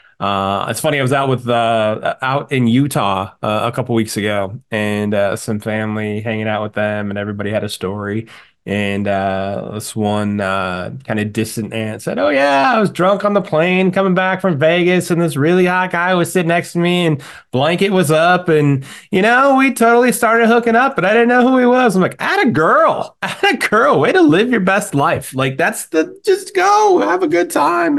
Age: 20-39